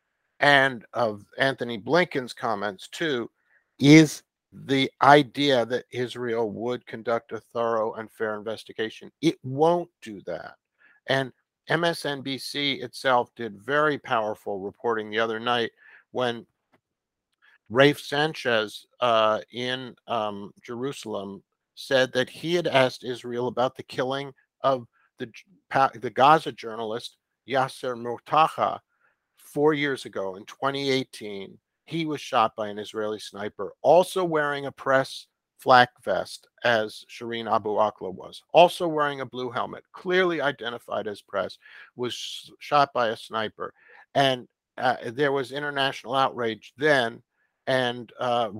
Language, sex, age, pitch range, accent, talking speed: English, male, 50-69, 115-140 Hz, American, 125 wpm